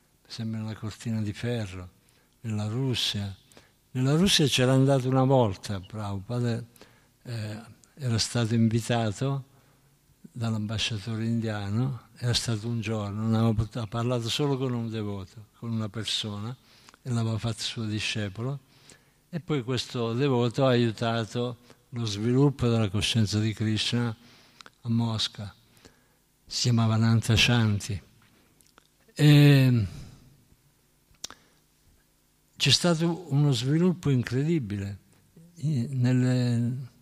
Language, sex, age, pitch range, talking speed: Italian, male, 60-79, 110-135 Hz, 100 wpm